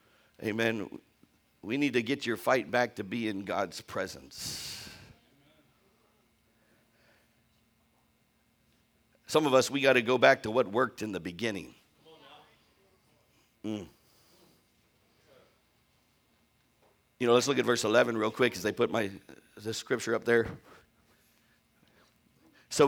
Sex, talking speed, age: male, 120 wpm, 50-69